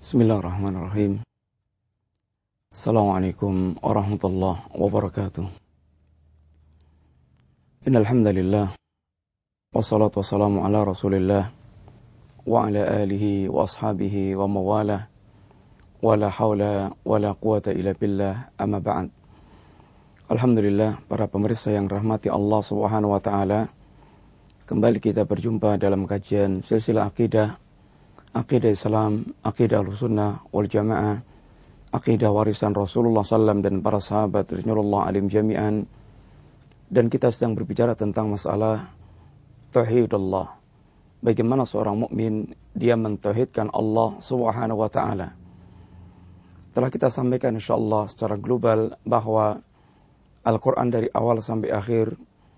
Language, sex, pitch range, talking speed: Malay, male, 100-110 Hz, 100 wpm